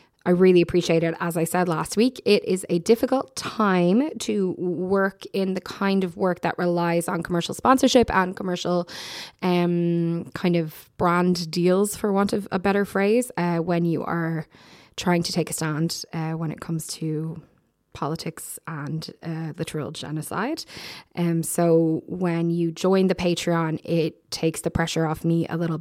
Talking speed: 175 wpm